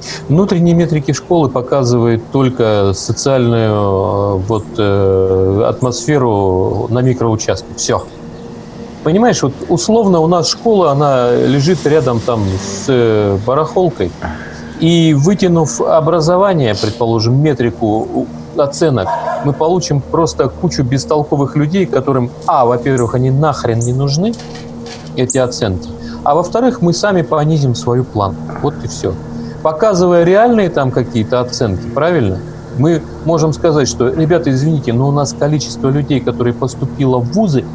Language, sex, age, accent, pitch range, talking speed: Russian, male, 30-49, native, 115-165 Hz, 115 wpm